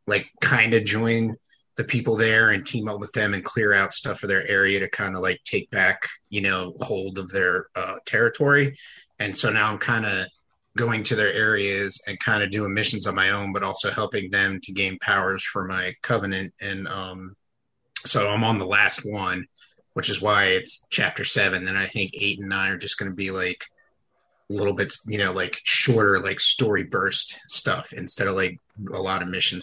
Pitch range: 100-125 Hz